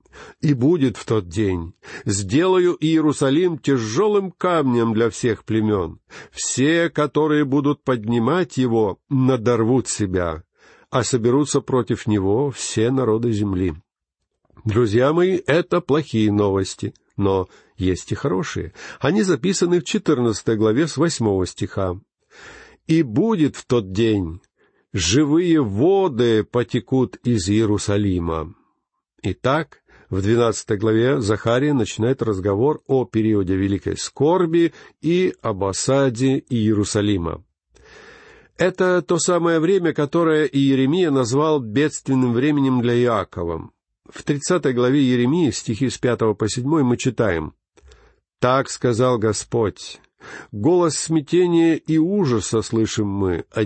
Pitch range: 110-155 Hz